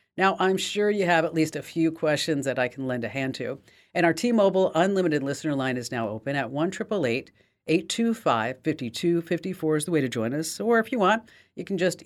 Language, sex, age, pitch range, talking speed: English, female, 40-59, 130-175 Hz, 260 wpm